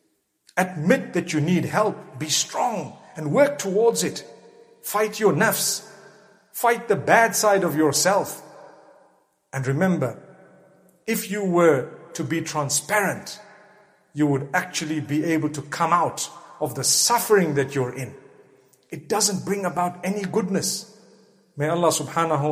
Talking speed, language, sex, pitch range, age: 135 wpm, English, male, 150-210 Hz, 50-69